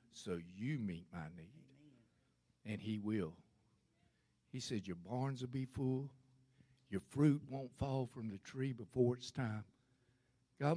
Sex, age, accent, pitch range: male, 60-79, American, 105-140 Hz